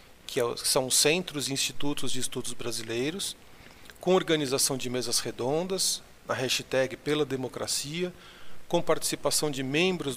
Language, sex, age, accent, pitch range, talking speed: Portuguese, male, 40-59, Brazilian, 130-170 Hz, 125 wpm